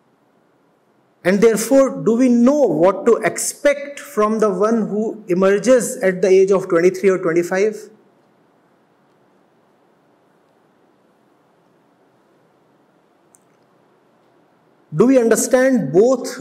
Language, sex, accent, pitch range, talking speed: English, male, Indian, 195-235 Hz, 90 wpm